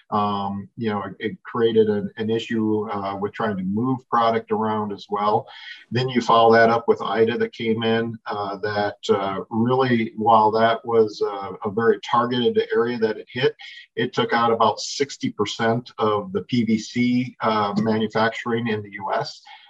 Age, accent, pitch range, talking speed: 50-69, American, 105-125 Hz, 175 wpm